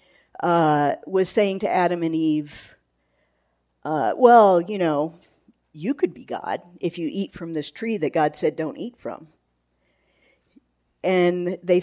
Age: 50-69